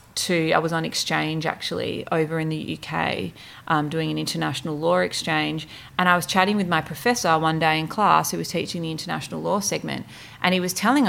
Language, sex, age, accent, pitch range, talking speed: English, female, 30-49, Australian, 155-185 Hz, 205 wpm